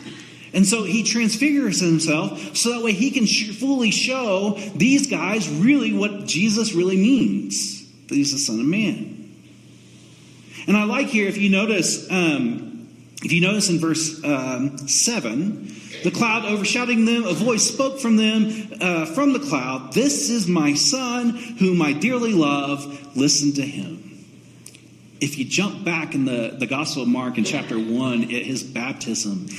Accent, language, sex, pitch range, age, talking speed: American, English, male, 145-210 Hz, 40-59, 160 wpm